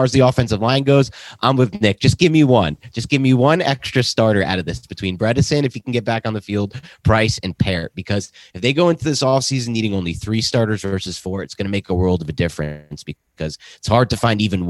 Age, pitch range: 30-49, 90-120 Hz